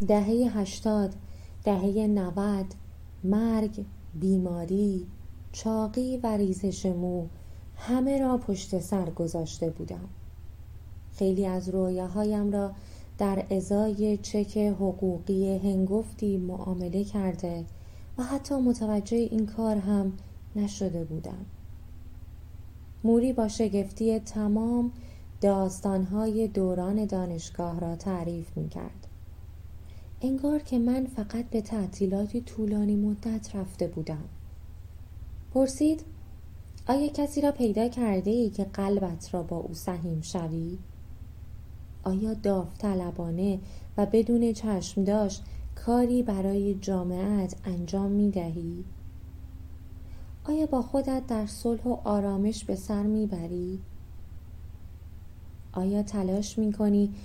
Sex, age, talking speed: female, 20-39, 95 wpm